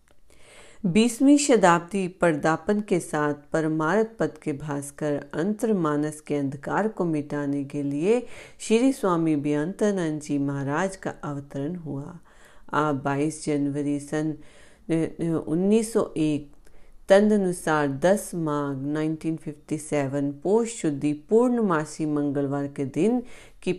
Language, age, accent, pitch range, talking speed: Hindi, 40-59, native, 145-190 Hz, 110 wpm